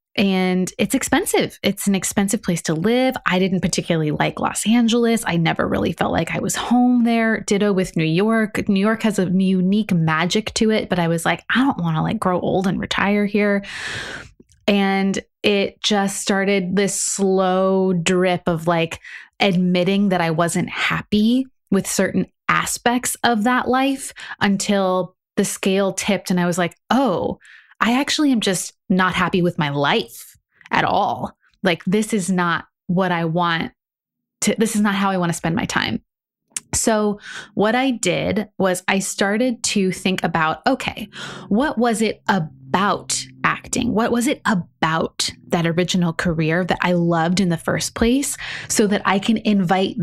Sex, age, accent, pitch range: female, 20-39, American, 185-230 Hz